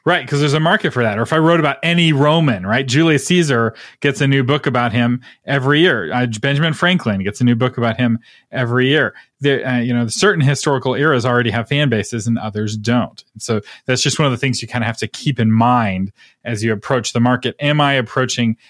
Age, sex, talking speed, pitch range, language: 30-49, male, 235 wpm, 115-160 Hz, English